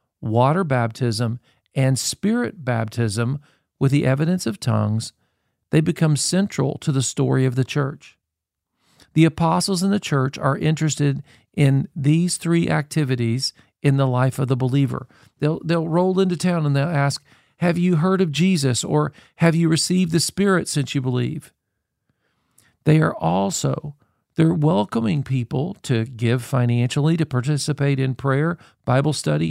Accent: American